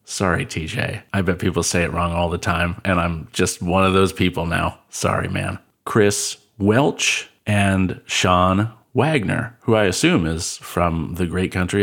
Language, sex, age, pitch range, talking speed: English, male, 40-59, 90-105 Hz, 170 wpm